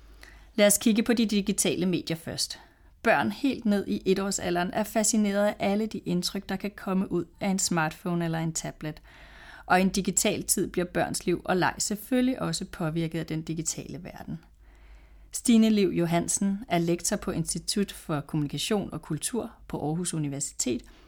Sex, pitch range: female, 165-205 Hz